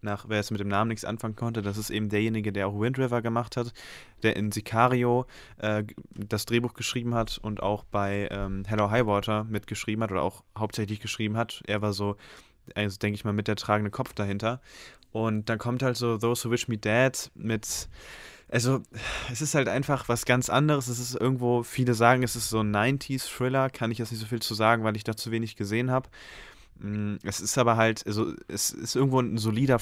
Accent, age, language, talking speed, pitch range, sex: German, 20-39, German, 215 wpm, 105-120 Hz, male